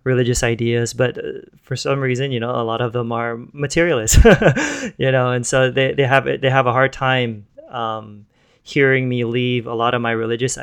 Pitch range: 115-130 Hz